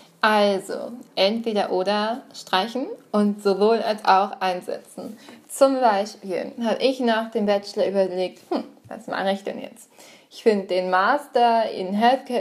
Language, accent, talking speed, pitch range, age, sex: German, German, 140 wpm, 200-240 Hz, 20-39, female